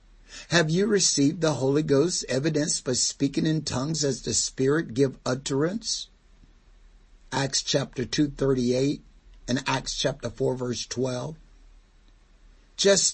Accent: American